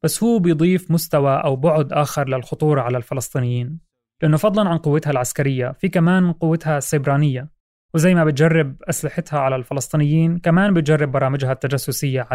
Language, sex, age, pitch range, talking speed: Arabic, male, 20-39, 135-170 Hz, 140 wpm